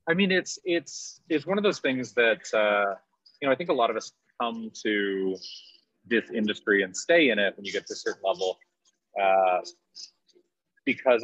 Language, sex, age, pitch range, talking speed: English, male, 30-49, 95-135 Hz, 190 wpm